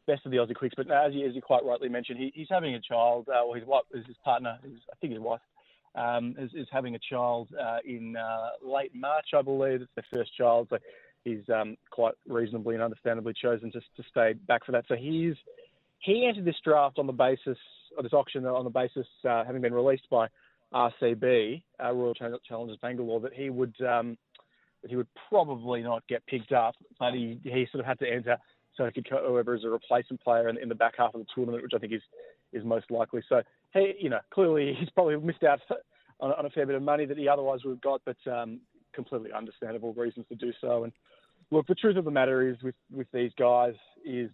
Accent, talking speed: Australian, 235 wpm